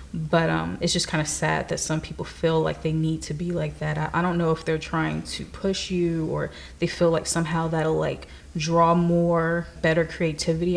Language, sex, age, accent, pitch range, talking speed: English, female, 20-39, American, 155-175 Hz, 215 wpm